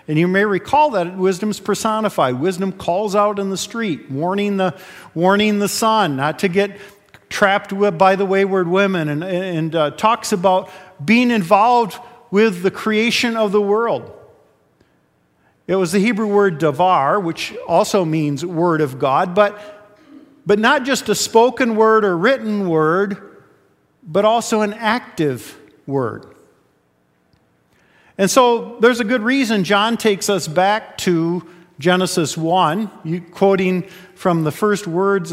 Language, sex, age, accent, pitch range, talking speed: English, male, 50-69, American, 175-215 Hz, 145 wpm